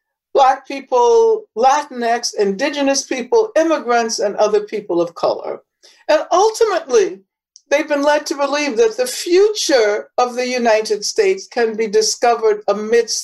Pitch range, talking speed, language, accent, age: 235-360 Hz, 130 wpm, English, American, 60-79